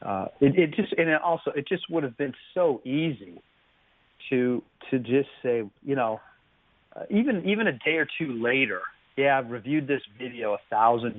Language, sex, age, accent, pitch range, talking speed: English, male, 40-59, American, 110-140 Hz, 190 wpm